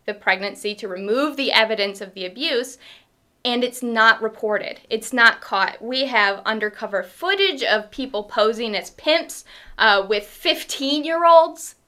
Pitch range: 200-255 Hz